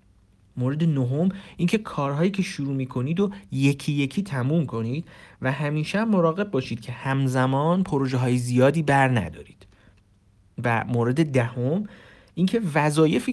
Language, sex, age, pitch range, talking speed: Persian, male, 50-69, 115-160 Hz, 125 wpm